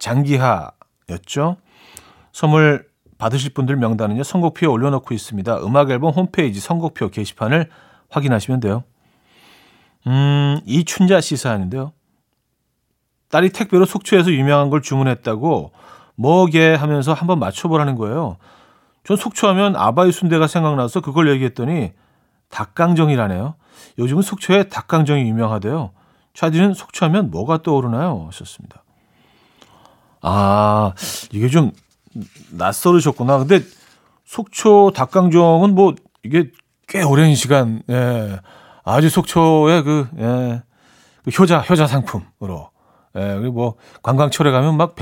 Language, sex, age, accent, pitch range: Korean, male, 40-59, native, 120-170 Hz